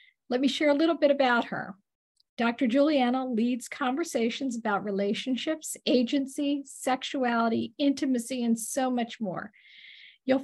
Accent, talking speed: American, 125 wpm